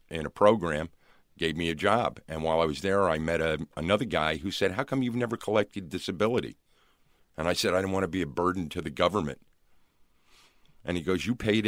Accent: American